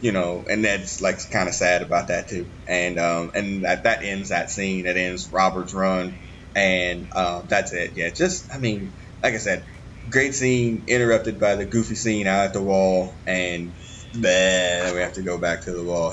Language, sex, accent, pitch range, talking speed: English, male, American, 90-110 Hz, 205 wpm